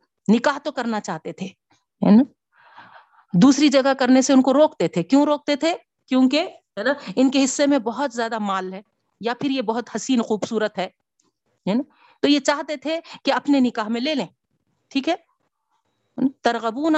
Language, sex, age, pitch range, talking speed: Urdu, female, 50-69, 210-280 Hz, 150 wpm